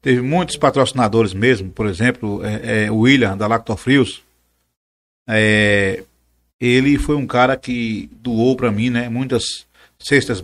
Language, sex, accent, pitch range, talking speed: Portuguese, male, Brazilian, 105-120 Hz, 140 wpm